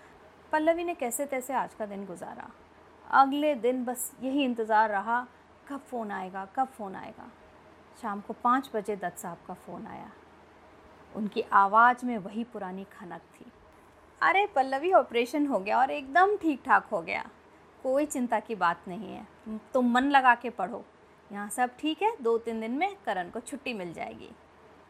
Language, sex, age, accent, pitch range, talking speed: Hindi, female, 30-49, native, 205-280 Hz, 170 wpm